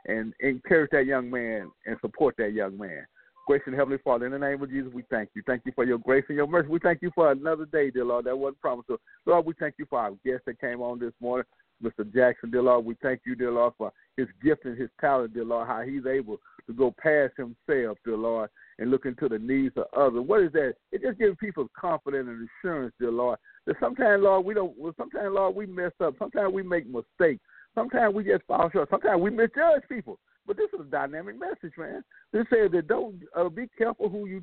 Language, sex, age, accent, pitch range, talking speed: English, male, 50-69, American, 120-190 Hz, 240 wpm